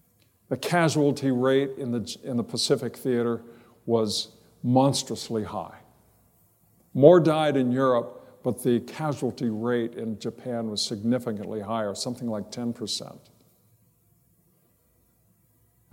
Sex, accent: male, American